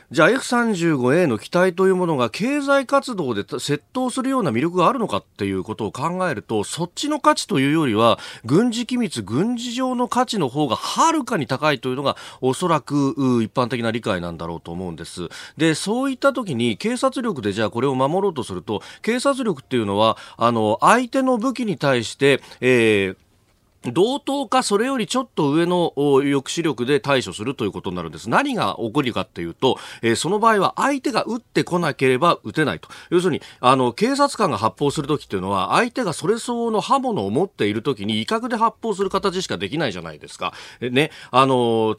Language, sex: Japanese, male